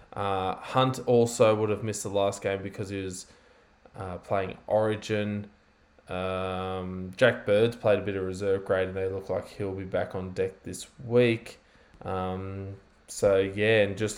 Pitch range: 95-105 Hz